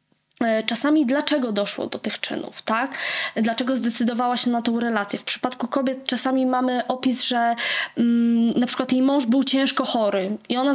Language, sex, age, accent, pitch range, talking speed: Polish, female, 20-39, native, 225-280 Hz, 165 wpm